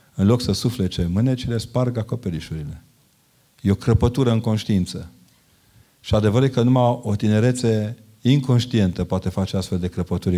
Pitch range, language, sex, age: 95-120 Hz, Romanian, male, 40-59